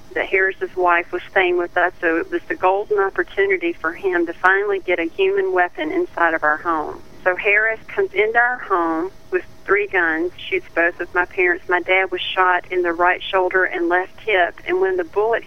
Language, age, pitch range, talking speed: English, 40-59, 175-250 Hz, 210 wpm